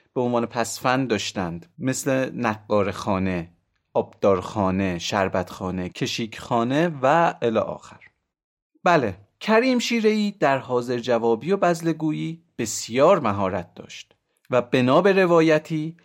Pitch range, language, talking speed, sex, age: 105-180 Hz, Persian, 105 wpm, male, 30-49